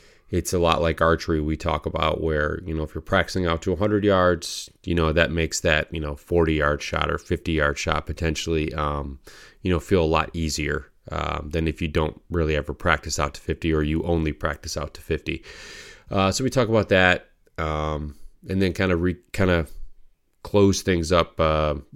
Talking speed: 200 wpm